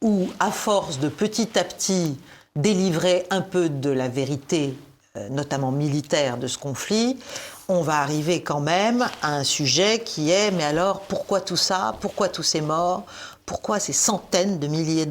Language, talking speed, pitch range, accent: French, 165 wpm, 150-205 Hz, French